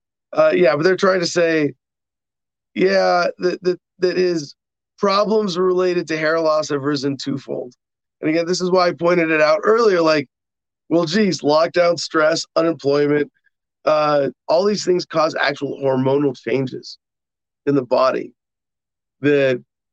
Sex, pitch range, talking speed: male, 135-180 Hz, 140 wpm